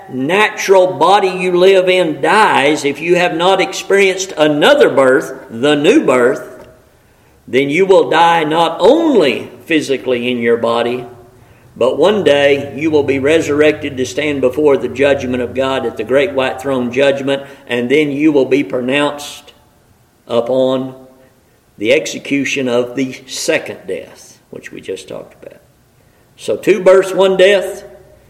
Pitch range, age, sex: 130-185 Hz, 50-69, male